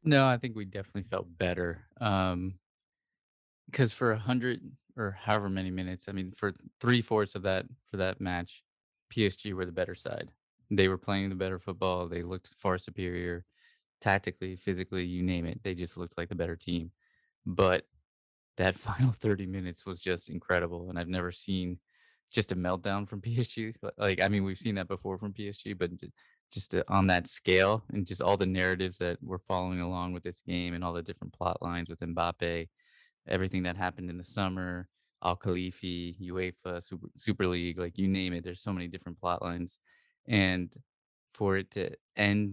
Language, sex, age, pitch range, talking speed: English, male, 20-39, 90-100 Hz, 185 wpm